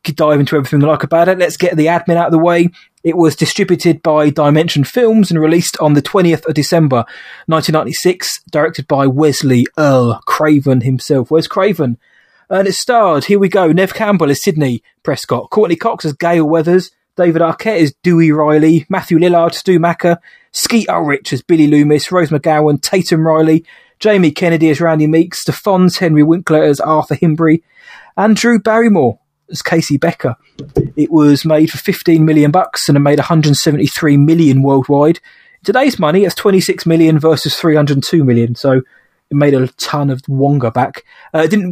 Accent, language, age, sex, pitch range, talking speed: British, English, 20-39, male, 145-170 Hz, 170 wpm